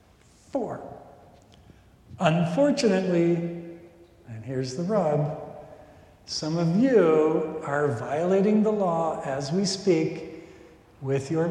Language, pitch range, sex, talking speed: English, 130-180 Hz, male, 95 wpm